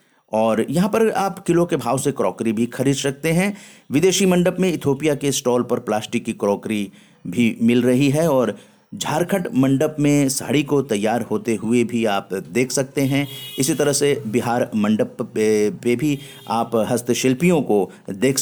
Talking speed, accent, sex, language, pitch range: 170 wpm, native, male, Hindi, 115-160 Hz